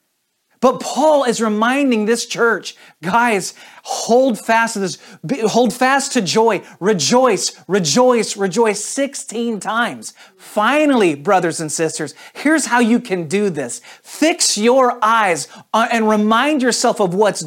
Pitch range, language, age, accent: 155-235 Hz, English, 40-59, American